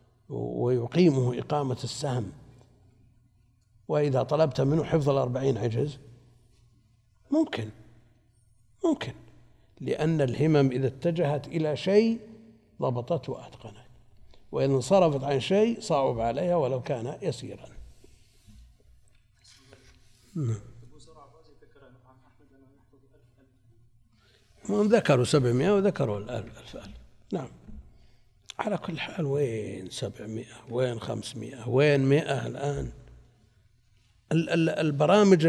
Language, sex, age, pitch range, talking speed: Arabic, male, 60-79, 115-150 Hz, 80 wpm